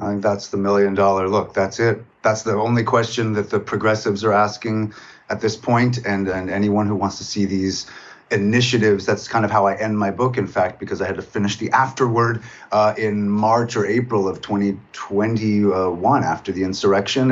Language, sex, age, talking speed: English, male, 30-49, 200 wpm